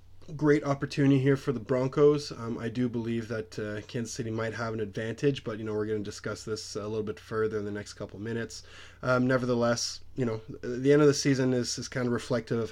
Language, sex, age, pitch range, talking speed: English, male, 20-39, 110-130 Hz, 240 wpm